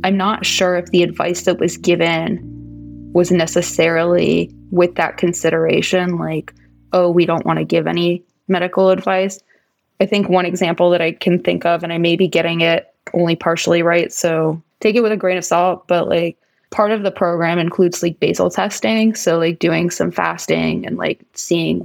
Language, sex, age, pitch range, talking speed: English, female, 20-39, 165-185 Hz, 185 wpm